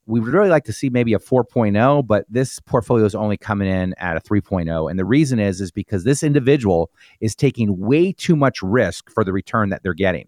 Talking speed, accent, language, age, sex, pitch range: 230 wpm, American, English, 40-59, male, 105-145 Hz